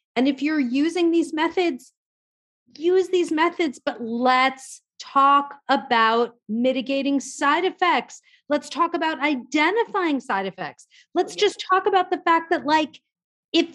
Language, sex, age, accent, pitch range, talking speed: English, female, 40-59, American, 235-335 Hz, 135 wpm